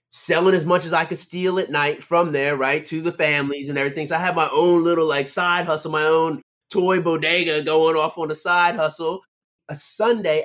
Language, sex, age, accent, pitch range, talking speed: English, male, 30-49, American, 135-175 Hz, 220 wpm